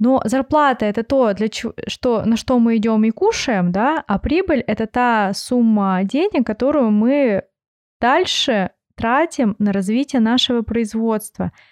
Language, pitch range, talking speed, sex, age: Russian, 185-245 Hz, 130 wpm, female, 20-39